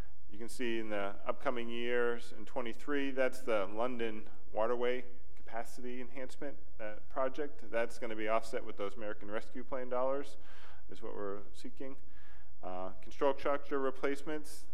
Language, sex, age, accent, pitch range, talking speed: English, male, 40-59, American, 95-115 Hz, 145 wpm